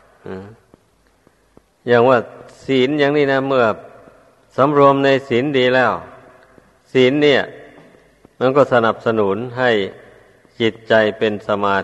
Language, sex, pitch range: Thai, male, 105-125 Hz